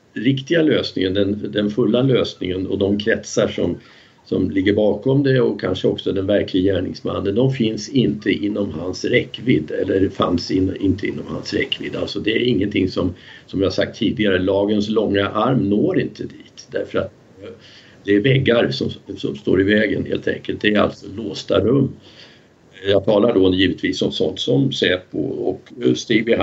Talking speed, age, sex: 175 wpm, 50-69, male